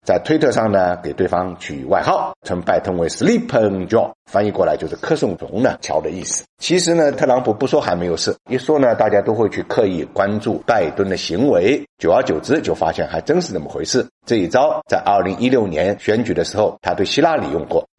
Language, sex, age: Chinese, male, 50-69